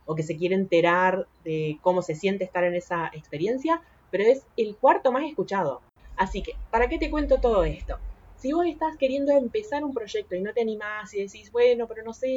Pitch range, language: 170-235 Hz, Spanish